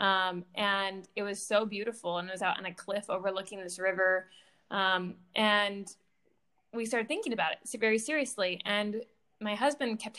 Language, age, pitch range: English, 20-39, 200-235 Hz